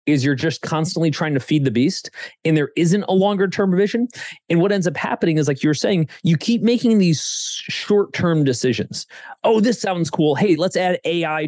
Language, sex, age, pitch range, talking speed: English, male, 30-49, 135-190 Hz, 205 wpm